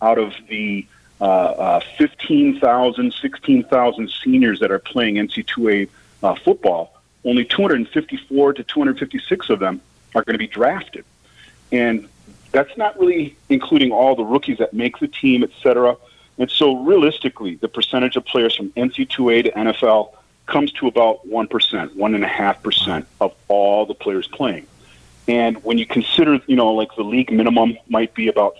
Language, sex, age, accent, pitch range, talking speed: English, male, 40-59, American, 105-130 Hz, 155 wpm